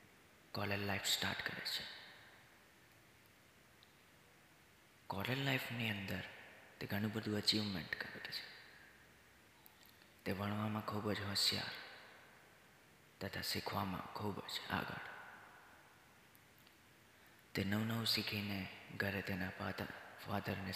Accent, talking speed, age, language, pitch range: native, 95 wpm, 30-49, Gujarati, 95-110 Hz